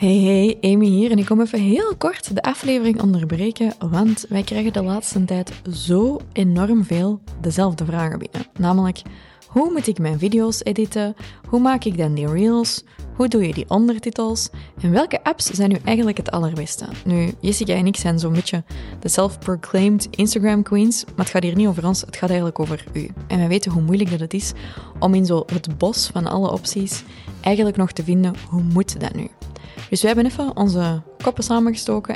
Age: 20-39